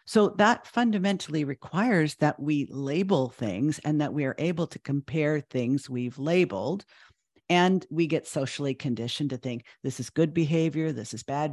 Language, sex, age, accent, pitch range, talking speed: English, female, 50-69, American, 130-160 Hz, 165 wpm